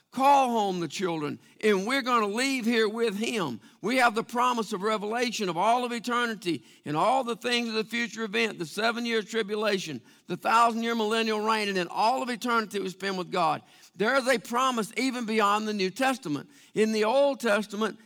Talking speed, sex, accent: 195 wpm, male, American